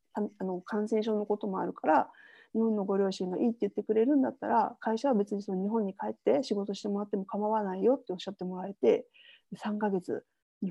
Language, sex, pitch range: Japanese, female, 190-230 Hz